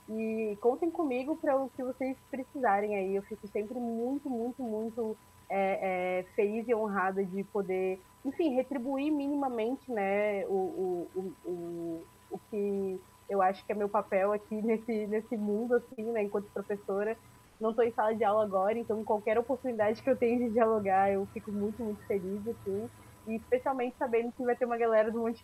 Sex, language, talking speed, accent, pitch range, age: female, Portuguese, 180 wpm, Brazilian, 200-235 Hz, 20-39